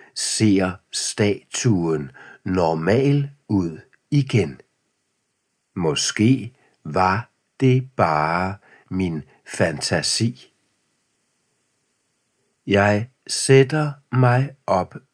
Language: Danish